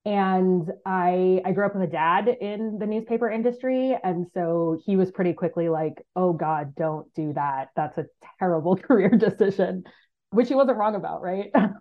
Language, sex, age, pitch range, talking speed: English, female, 20-39, 160-210 Hz, 180 wpm